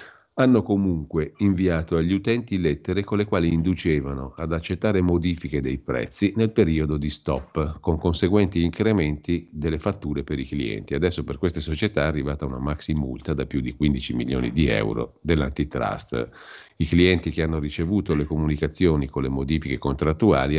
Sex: male